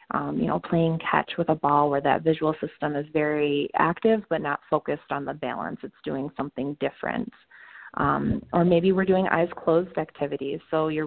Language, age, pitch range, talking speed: English, 30-49, 145-175 Hz, 190 wpm